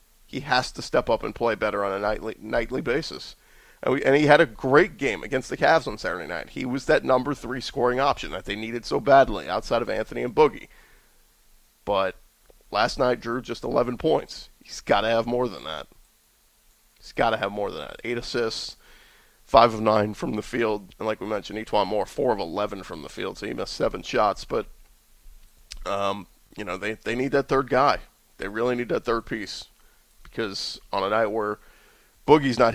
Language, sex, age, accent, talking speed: English, male, 30-49, American, 205 wpm